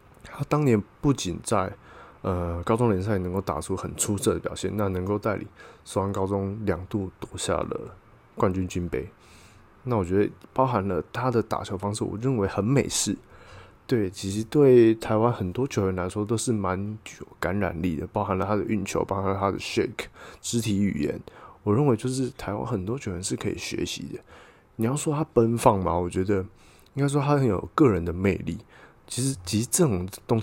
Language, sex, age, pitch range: Chinese, male, 20-39, 95-115 Hz